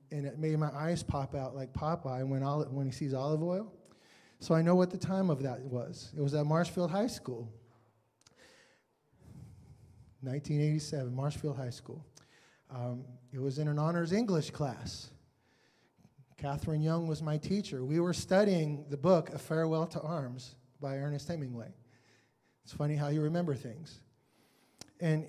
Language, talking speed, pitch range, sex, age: English, 155 wpm, 140-165 Hz, male, 20-39